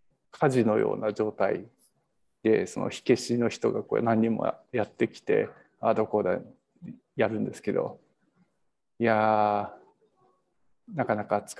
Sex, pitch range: male, 115-150 Hz